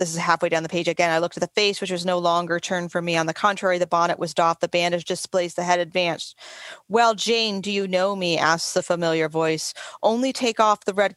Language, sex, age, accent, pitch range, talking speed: English, female, 30-49, American, 175-230 Hz, 255 wpm